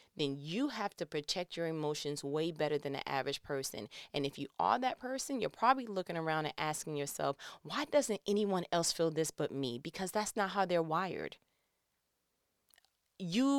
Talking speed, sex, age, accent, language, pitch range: 180 wpm, female, 30-49, American, English, 155-205 Hz